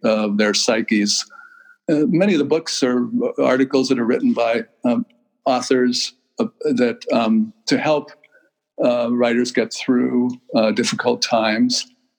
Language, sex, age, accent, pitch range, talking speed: English, male, 60-79, American, 120-165 Hz, 145 wpm